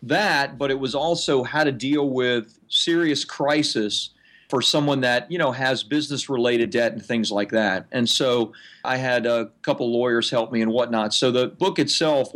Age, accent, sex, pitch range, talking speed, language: 40-59, American, male, 115-145 Hz, 190 wpm, English